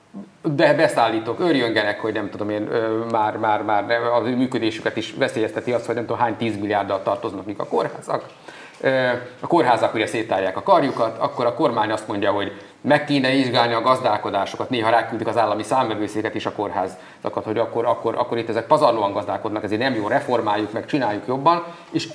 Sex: male